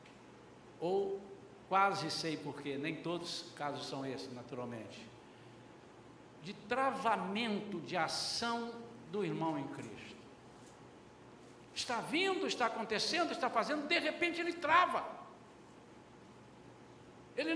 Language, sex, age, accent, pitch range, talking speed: Portuguese, male, 60-79, Brazilian, 220-325 Hz, 105 wpm